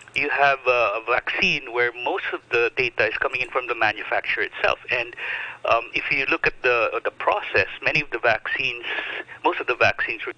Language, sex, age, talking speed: English, male, 50-69, 200 wpm